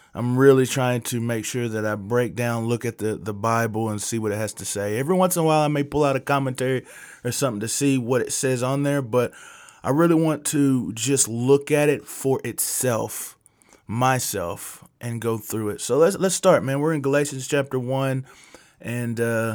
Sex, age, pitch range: male, 20-39, 115-140 Hz